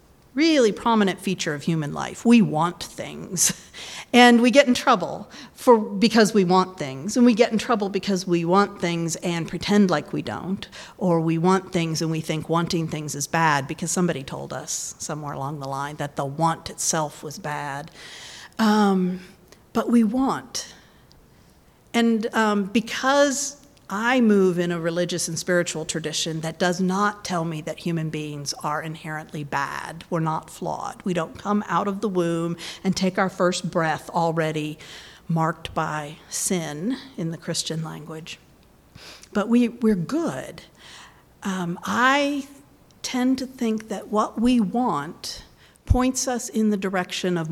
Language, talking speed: English, 160 wpm